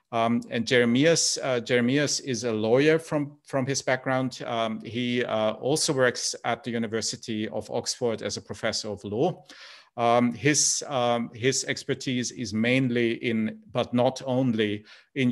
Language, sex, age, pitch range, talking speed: English, male, 50-69, 110-125 Hz, 150 wpm